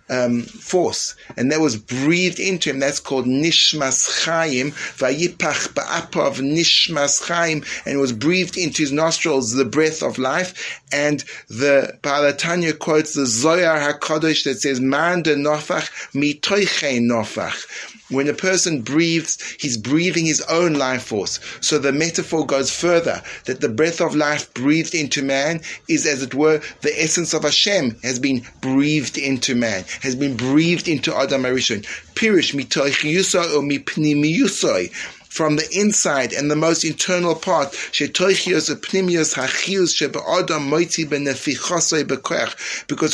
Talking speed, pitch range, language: 115 wpm, 140-170 Hz, English